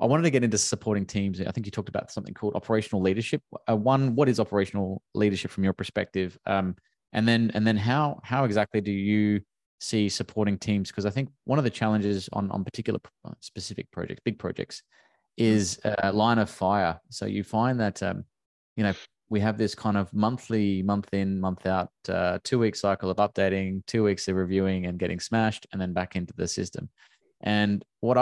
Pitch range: 95-110 Hz